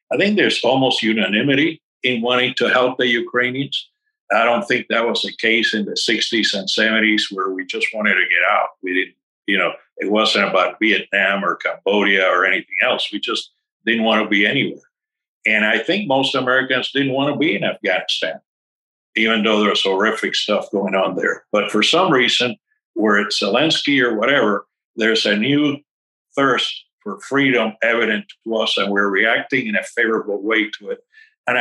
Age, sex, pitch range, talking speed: 60-79, male, 110-150 Hz, 185 wpm